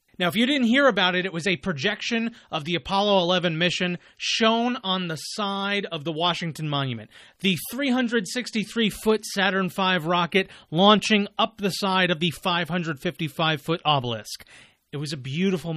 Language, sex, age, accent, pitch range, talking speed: English, male, 30-49, American, 145-190 Hz, 155 wpm